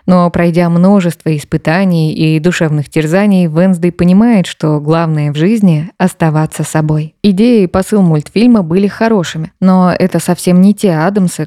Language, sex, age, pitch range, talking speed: Russian, female, 20-39, 160-195 Hz, 145 wpm